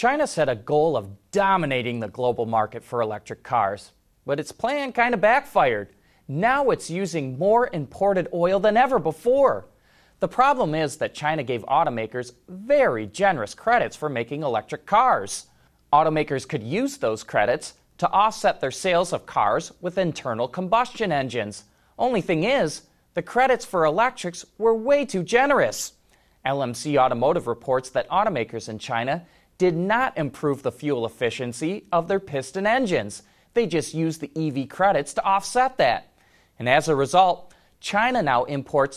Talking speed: 155 wpm